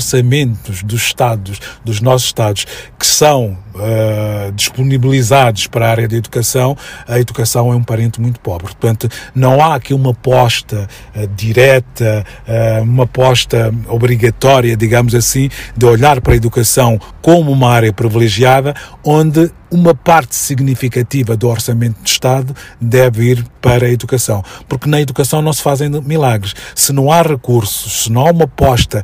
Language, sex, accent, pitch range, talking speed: Portuguese, male, Brazilian, 115-135 Hz, 155 wpm